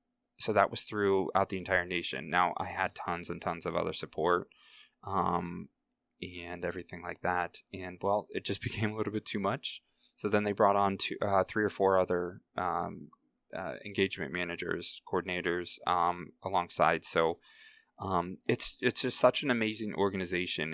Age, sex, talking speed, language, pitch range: 20-39, male, 170 wpm, English, 90-105 Hz